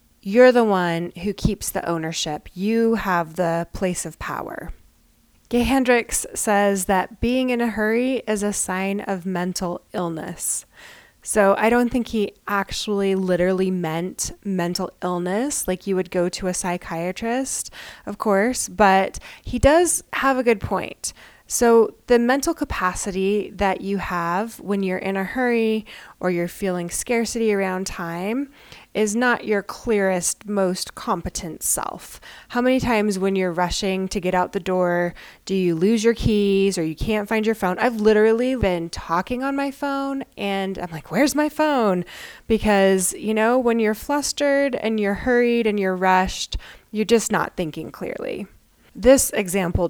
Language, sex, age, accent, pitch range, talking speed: English, female, 20-39, American, 185-230 Hz, 160 wpm